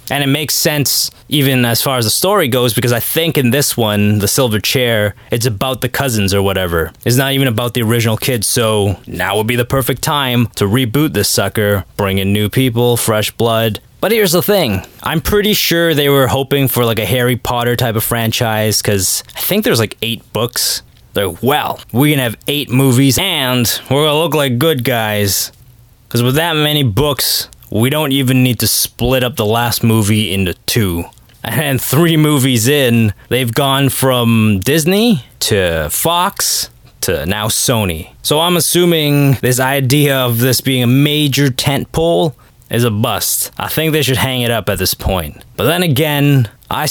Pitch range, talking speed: 115-140 Hz, 190 wpm